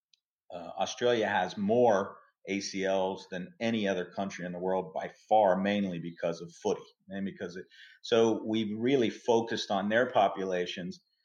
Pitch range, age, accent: 95-120 Hz, 40-59, American